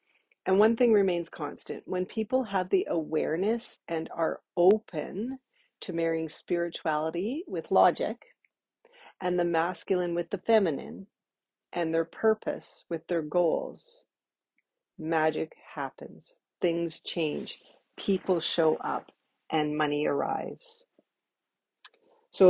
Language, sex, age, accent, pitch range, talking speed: English, female, 40-59, American, 165-200 Hz, 110 wpm